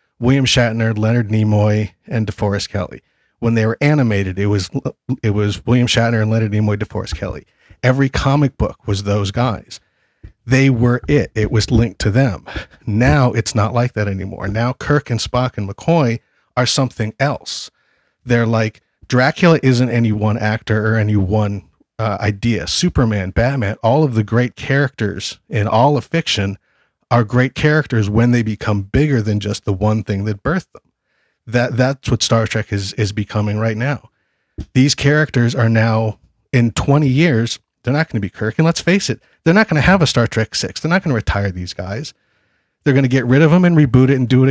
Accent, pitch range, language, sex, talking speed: American, 105-130 Hz, English, male, 195 wpm